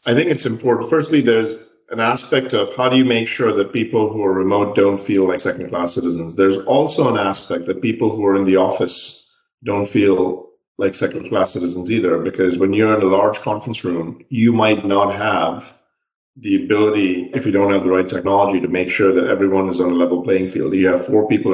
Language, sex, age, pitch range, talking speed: English, male, 40-59, 90-110 Hz, 215 wpm